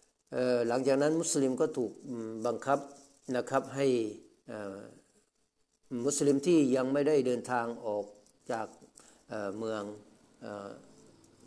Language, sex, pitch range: Thai, male, 105-125 Hz